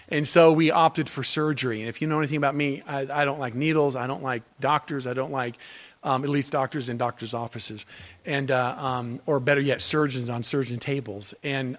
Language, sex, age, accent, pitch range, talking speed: English, male, 40-59, American, 140-185 Hz, 220 wpm